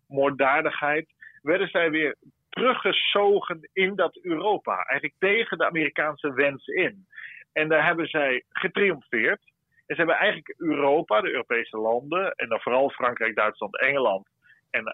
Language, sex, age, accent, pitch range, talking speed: Dutch, male, 40-59, Dutch, 135-175 Hz, 135 wpm